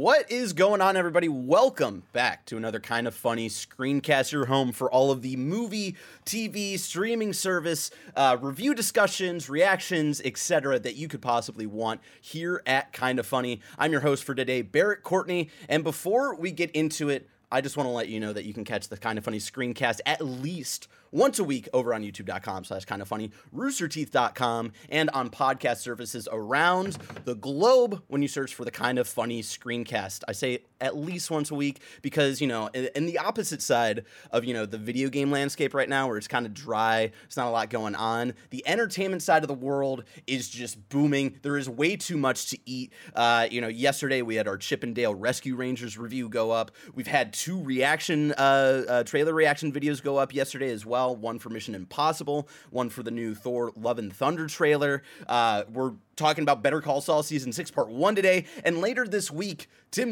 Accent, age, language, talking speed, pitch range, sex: American, 30-49, English, 205 wpm, 120-155 Hz, male